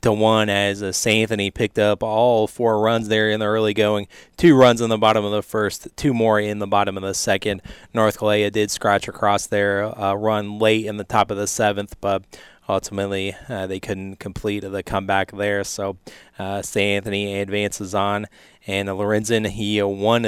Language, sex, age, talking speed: English, male, 20-39, 190 wpm